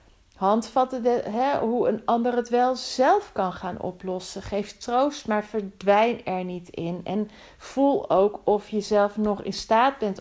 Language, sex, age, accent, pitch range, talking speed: Dutch, female, 40-59, Dutch, 185-230 Hz, 160 wpm